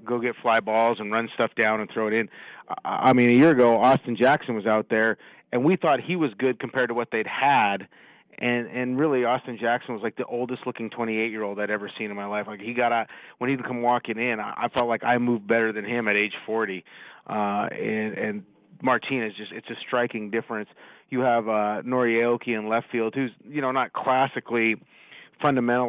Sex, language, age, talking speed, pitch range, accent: male, English, 30-49, 225 wpm, 105-120 Hz, American